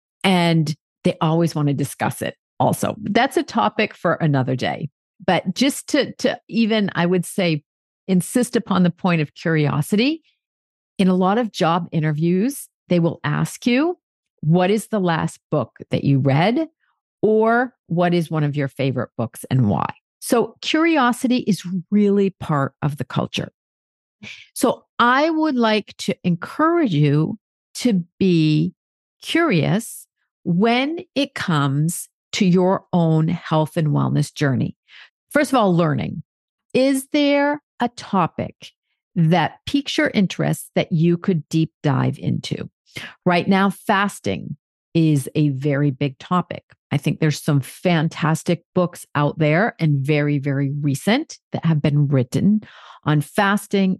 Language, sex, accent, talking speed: English, female, American, 140 wpm